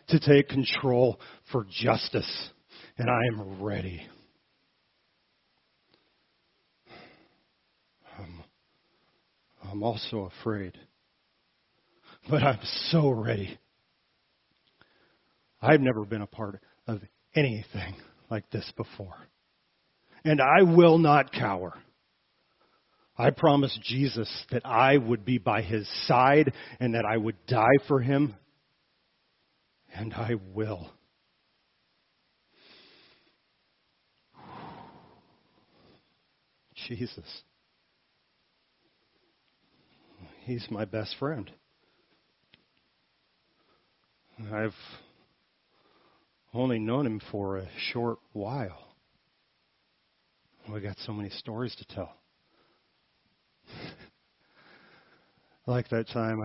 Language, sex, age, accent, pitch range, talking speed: English, male, 40-59, American, 100-125 Hz, 80 wpm